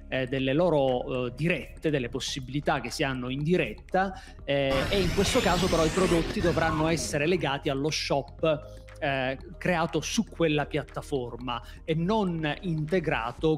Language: Italian